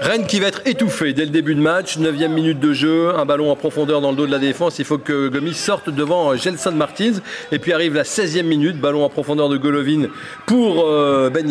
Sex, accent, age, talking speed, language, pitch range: male, French, 40-59, 245 wpm, French, 140-175 Hz